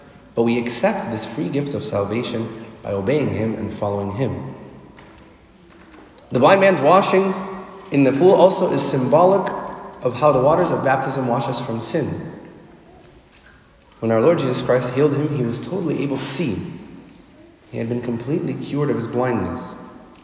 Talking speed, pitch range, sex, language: 165 wpm, 125-170 Hz, male, English